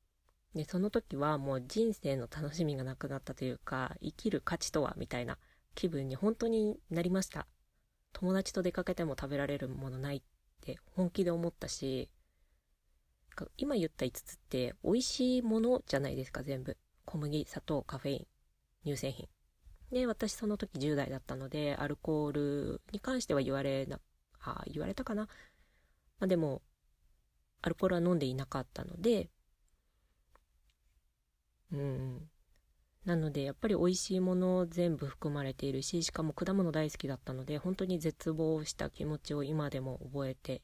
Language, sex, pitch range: Japanese, female, 130-175 Hz